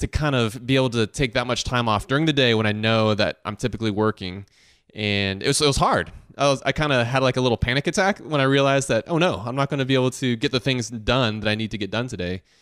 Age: 20-39